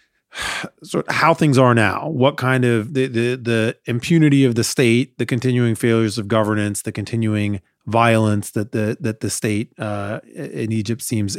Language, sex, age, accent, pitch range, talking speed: English, male, 30-49, American, 110-125 Hz, 170 wpm